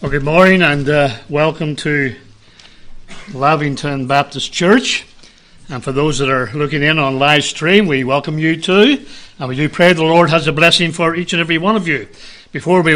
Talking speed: 195 wpm